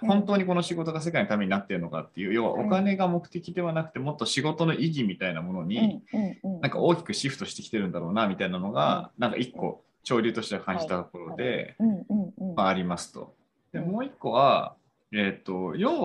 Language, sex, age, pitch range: Japanese, male, 20-39, 120-190 Hz